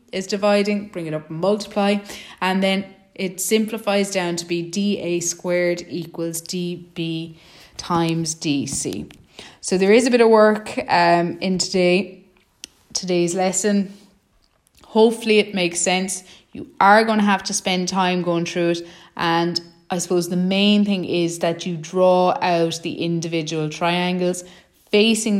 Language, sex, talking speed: English, female, 145 wpm